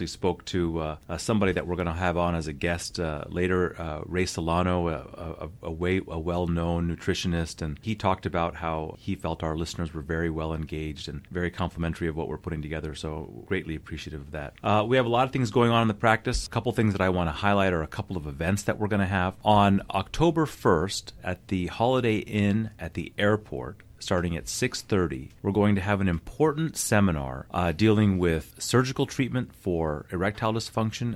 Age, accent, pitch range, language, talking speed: 30-49, American, 85-105 Hz, English, 210 wpm